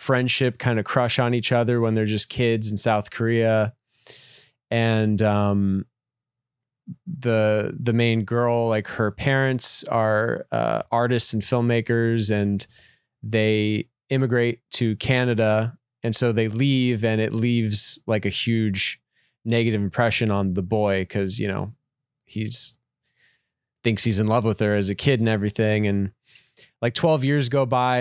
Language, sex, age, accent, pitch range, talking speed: English, male, 20-39, American, 110-125 Hz, 150 wpm